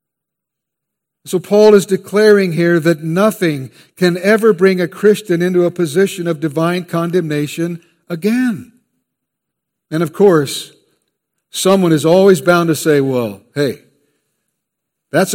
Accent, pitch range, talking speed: American, 160-200 Hz, 120 wpm